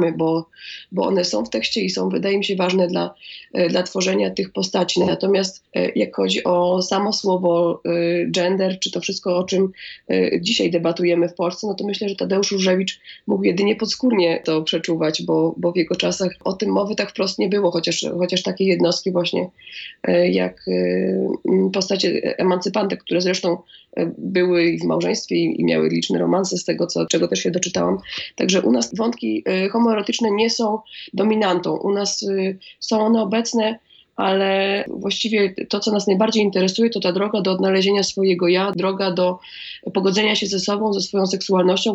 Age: 20-39